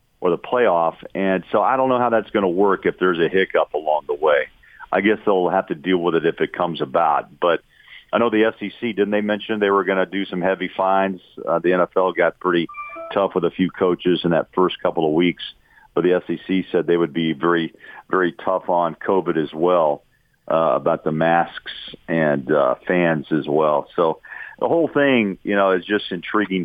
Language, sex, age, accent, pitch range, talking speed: English, male, 50-69, American, 85-100 Hz, 215 wpm